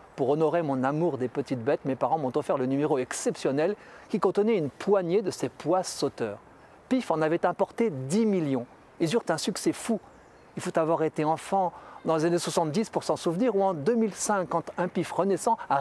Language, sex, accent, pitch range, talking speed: French, male, French, 150-225 Hz, 200 wpm